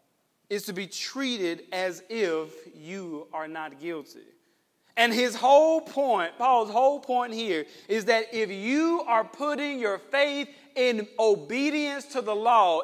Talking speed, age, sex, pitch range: 145 wpm, 40-59, male, 200-260 Hz